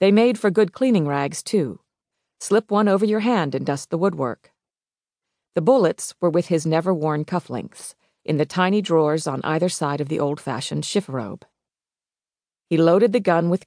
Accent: American